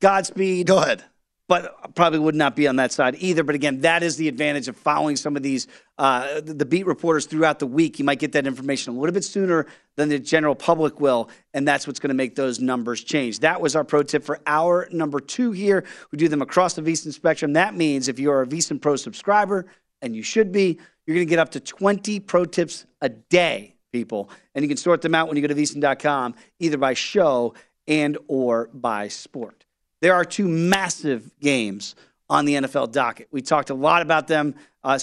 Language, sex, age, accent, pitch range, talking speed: English, male, 40-59, American, 140-180 Hz, 220 wpm